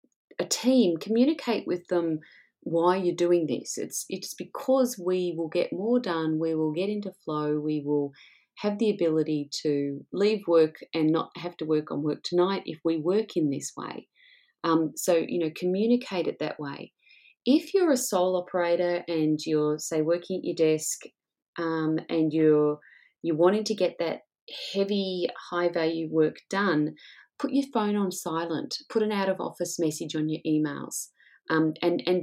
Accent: Australian